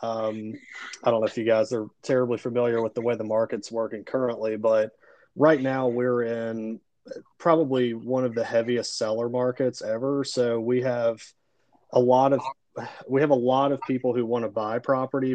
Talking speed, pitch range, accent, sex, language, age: 185 wpm, 115-130 Hz, American, male, English, 30-49